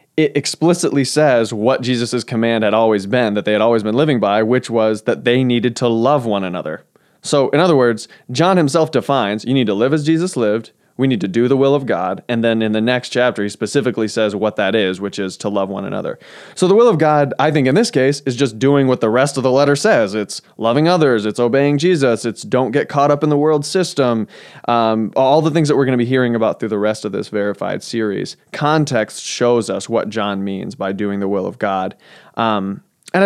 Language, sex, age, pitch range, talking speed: English, male, 20-39, 115-150 Hz, 240 wpm